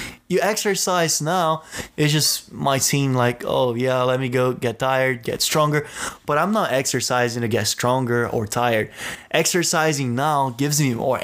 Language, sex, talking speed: English, male, 165 wpm